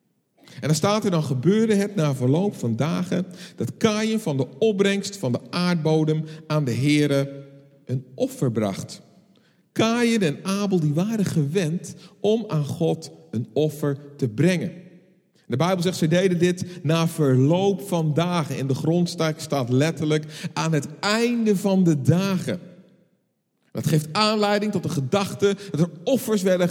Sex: male